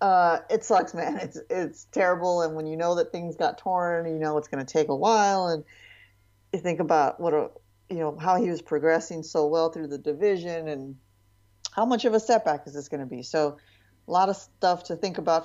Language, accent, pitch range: English, American, 145-195 Hz